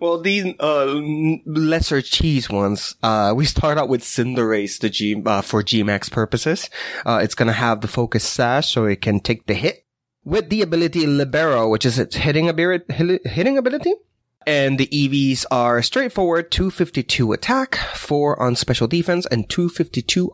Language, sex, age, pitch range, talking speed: English, male, 20-39, 110-155 Hz, 165 wpm